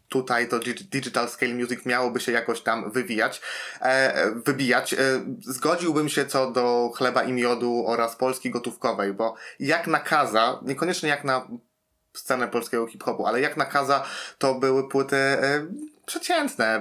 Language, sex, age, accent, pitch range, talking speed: Polish, male, 20-39, native, 120-140 Hz, 130 wpm